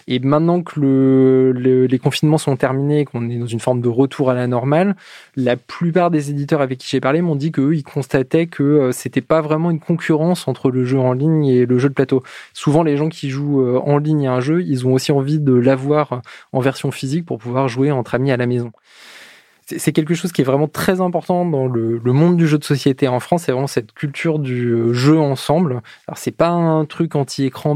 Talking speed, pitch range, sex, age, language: 230 wpm, 130-155 Hz, male, 20-39, French